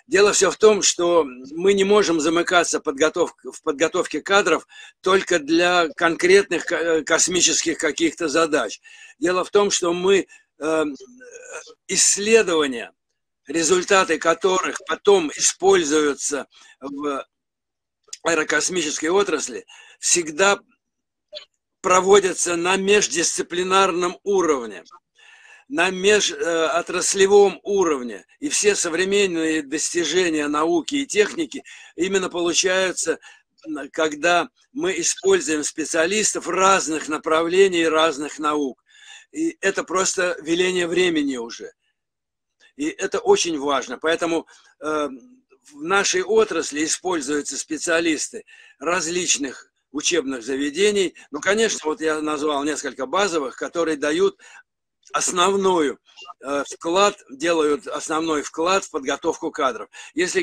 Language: Russian